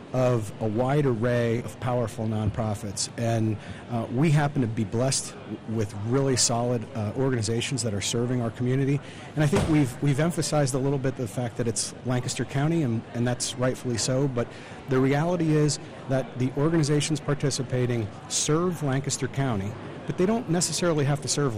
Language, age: English, 40-59